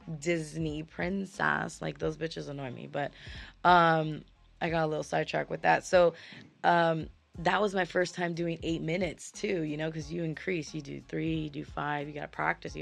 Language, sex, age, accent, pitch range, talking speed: English, female, 20-39, American, 145-170 Hz, 195 wpm